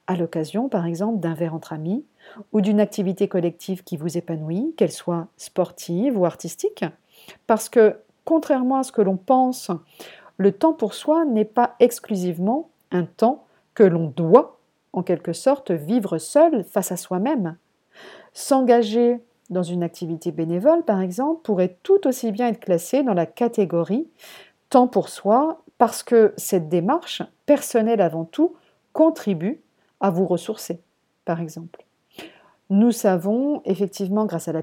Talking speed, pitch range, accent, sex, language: 150 wpm, 170-225 Hz, French, female, French